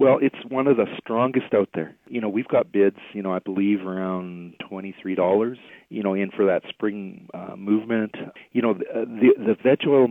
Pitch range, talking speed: 95-110 Hz, 200 wpm